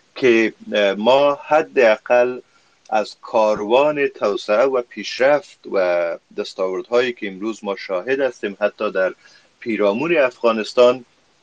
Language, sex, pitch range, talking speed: Persian, male, 100-135 Hz, 105 wpm